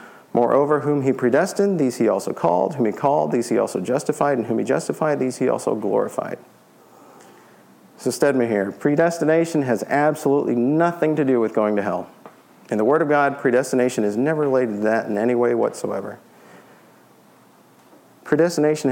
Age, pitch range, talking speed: 40-59, 105-135 Hz, 165 wpm